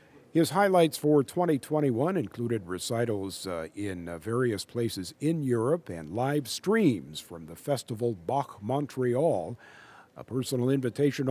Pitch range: 105-150 Hz